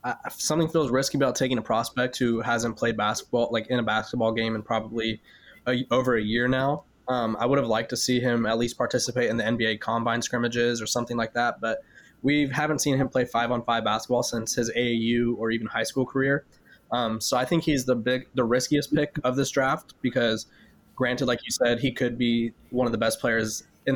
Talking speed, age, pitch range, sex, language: 220 wpm, 20-39, 115-130 Hz, male, English